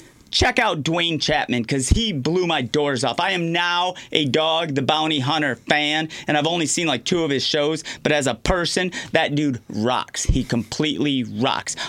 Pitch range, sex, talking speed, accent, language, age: 130-175 Hz, male, 190 wpm, American, English, 30-49